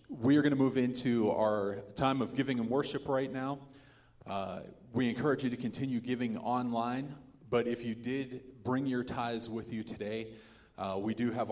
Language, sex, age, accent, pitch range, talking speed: English, male, 30-49, American, 105-120 Hz, 190 wpm